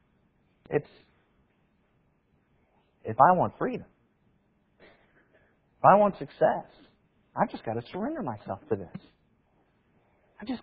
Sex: male